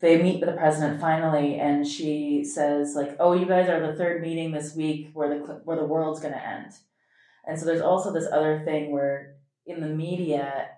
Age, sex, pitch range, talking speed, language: 20-39, female, 145-170 Hz, 210 wpm, English